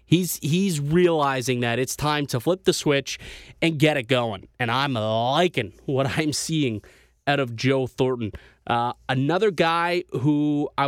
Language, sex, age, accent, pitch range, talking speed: English, male, 20-39, American, 120-155 Hz, 160 wpm